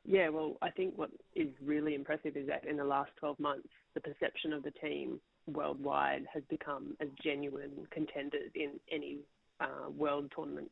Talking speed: 175 wpm